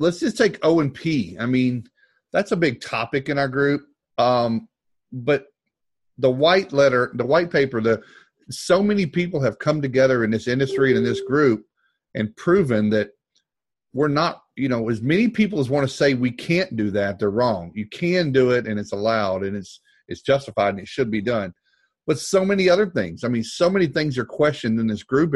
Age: 40-59